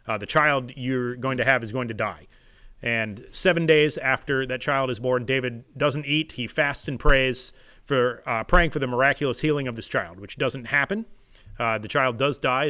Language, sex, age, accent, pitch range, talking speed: English, male, 30-49, American, 120-145 Hz, 210 wpm